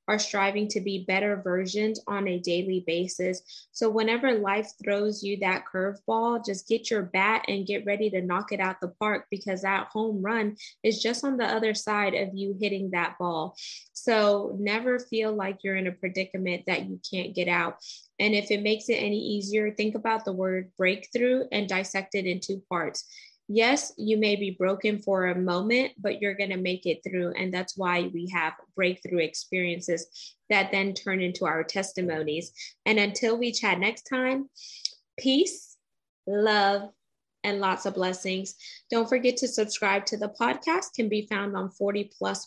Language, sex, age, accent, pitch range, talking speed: English, female, 20-39, American, 185-220 Hz, 180 wpm